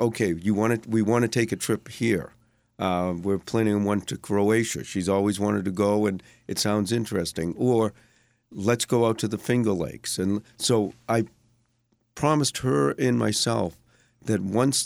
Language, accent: English, American